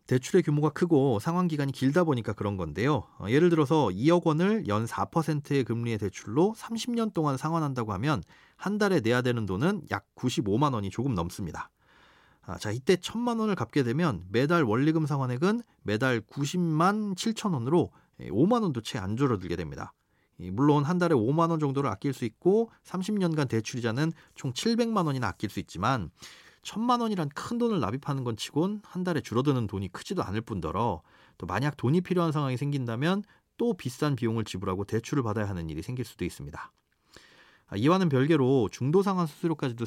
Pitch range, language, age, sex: 115-175 Hz, Korean, 40-59, male